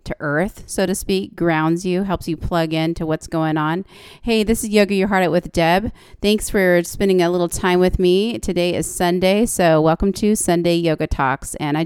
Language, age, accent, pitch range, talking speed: English, 30-49, American, 160-190 Hz, 220 wpm